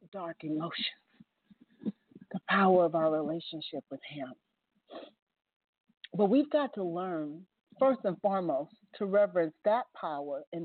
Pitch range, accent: 165-225 Hz, American